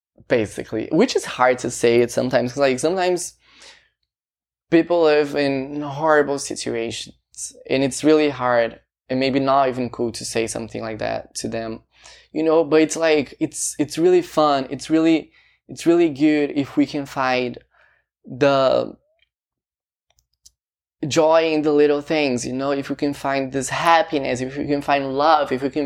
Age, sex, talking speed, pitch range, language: 20-39, male, 165 wpm, 125-160 Hz, English